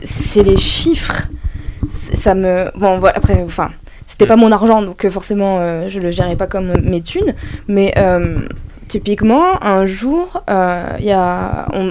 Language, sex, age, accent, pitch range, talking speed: French, female, 20-39, French, 175-220 Hz, 165 wpm